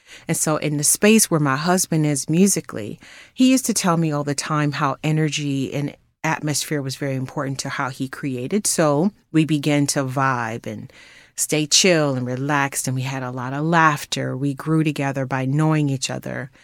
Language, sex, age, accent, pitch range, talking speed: English, female, 30-49, American, 135-160 Hz, 190 wpm